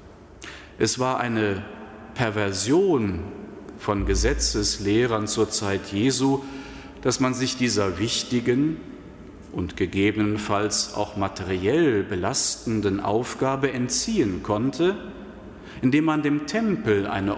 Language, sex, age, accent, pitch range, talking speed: German, male, 40-59, German, 95-120 Hz, 95 wpm